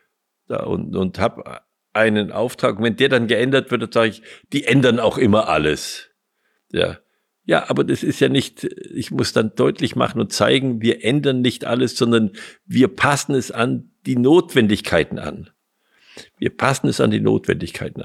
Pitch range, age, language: 105-150 Hz, 50-69, German